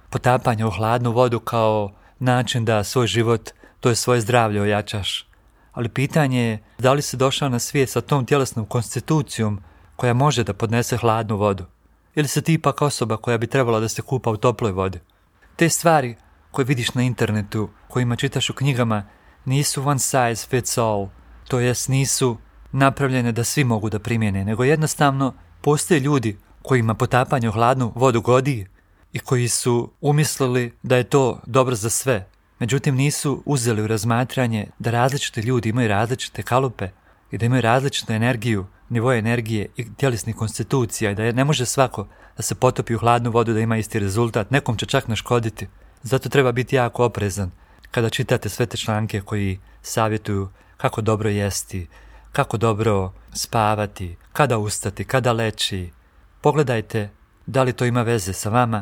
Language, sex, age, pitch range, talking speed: Croatian, male, 40-59, 105-130 Hz, 165 wpm